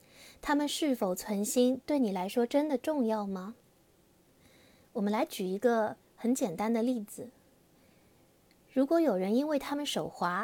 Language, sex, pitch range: Chinese, female, 205-270 Hz